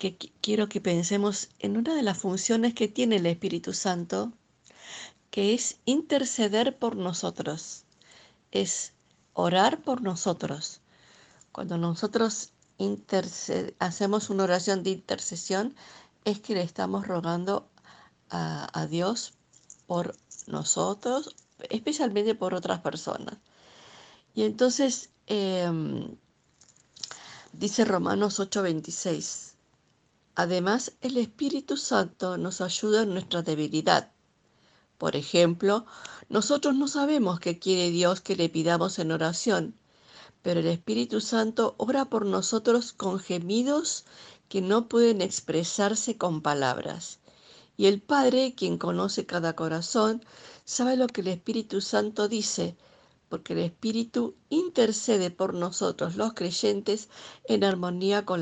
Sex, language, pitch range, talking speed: female, Spanish, 180-230 Hz, 115 wpm